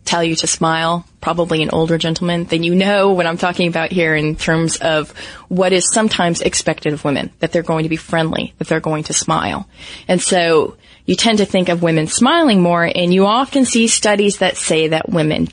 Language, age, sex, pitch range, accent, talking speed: English, 30-49, female, 165-200 Hz, American, 215 wpm